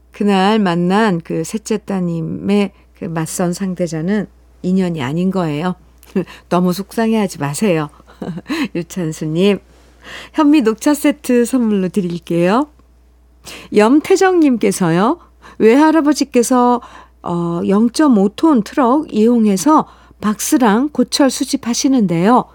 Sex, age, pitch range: female, 50-69, 170-240 Hz